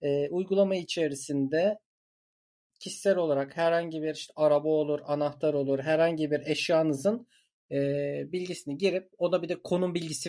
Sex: male